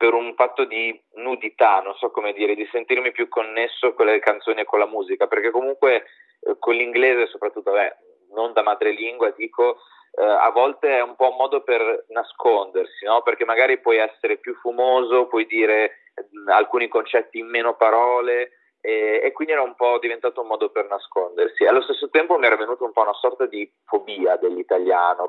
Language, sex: Italian, male